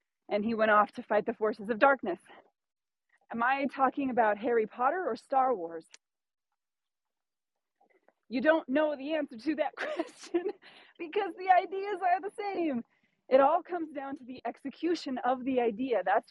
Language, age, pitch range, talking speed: English, 30-49, 225-305 Hz, 160 wpm